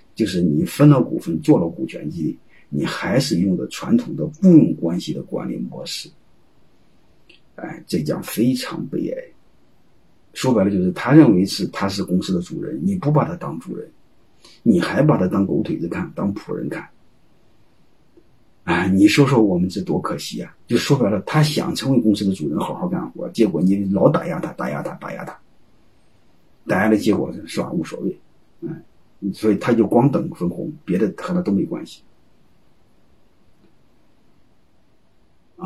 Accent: native